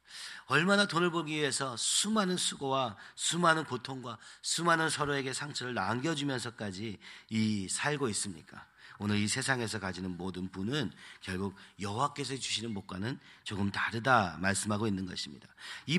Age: 40-59